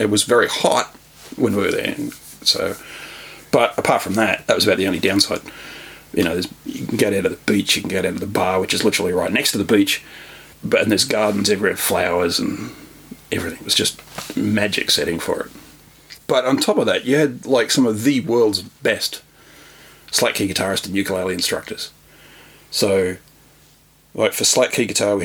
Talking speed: 200 wpm